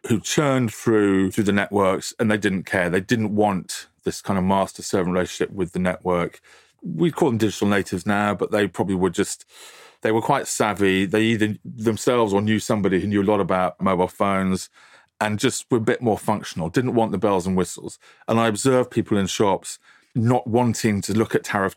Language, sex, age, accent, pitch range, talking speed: English, male, 30-49, British, 95-110 Hz, 205 wpm